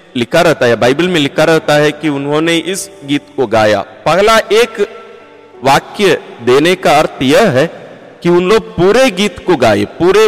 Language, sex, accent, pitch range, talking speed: Hindi, male, native, 145-200 Hz, 170 wpm